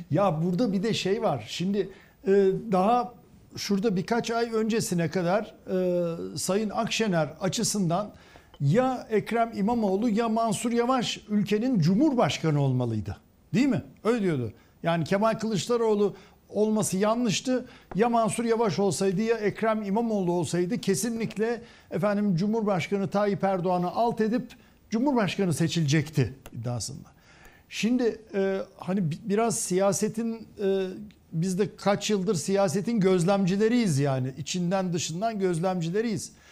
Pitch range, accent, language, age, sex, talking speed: 175-220 Hz, native, Turkish, 60-79, male, 110 wpm